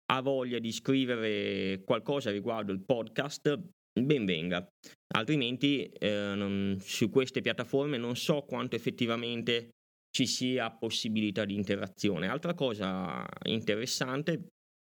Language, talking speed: Italian, 115 wpm